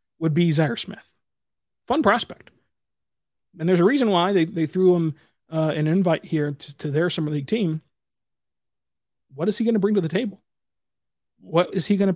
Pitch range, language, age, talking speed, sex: 150-195 Hz, English, 30-49, 190 wpm, male